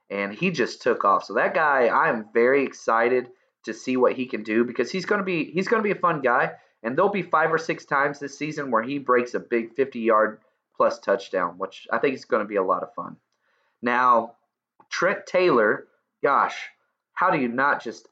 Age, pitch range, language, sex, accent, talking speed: 30-49, 120-160 Hz, English, male, American, 220 wpm